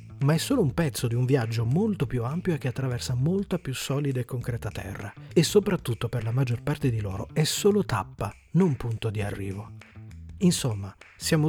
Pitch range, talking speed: 110-150 Hz, 195 wpm